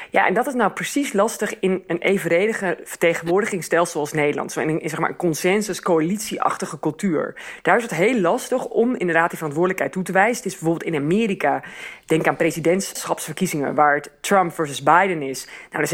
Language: Dutch